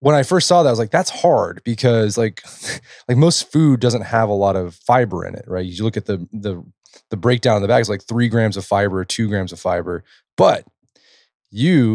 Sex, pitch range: male, 95-125 Hz